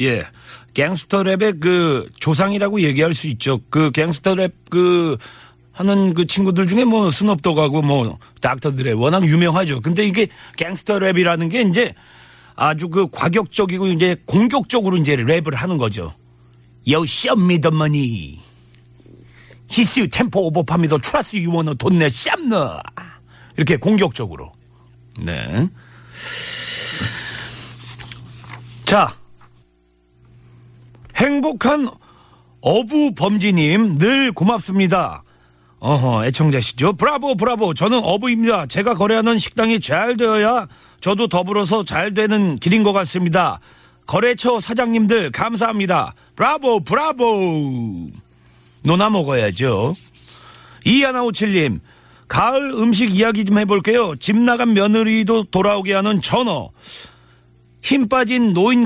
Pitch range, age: 130-215 Hz, 40-59